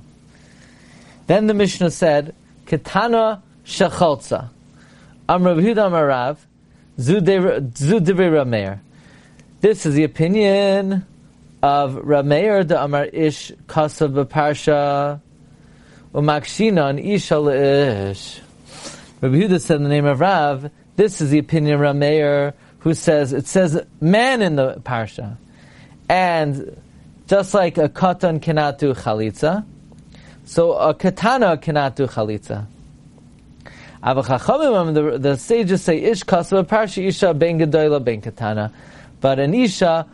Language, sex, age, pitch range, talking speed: English, male, 30-49, 140-180 Hz, 105 wpm